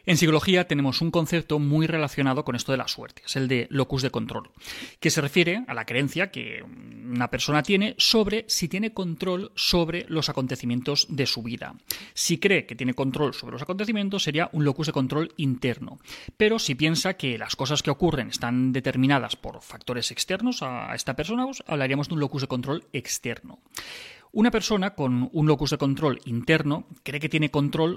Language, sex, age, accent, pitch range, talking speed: Spanish, male, 30-49, Spanish, 130-185 Hz, 190 wpm